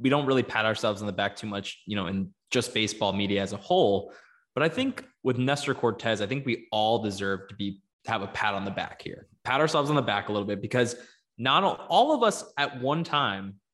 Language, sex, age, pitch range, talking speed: English, male, 20-39, 105-145 Hz, 245 wpm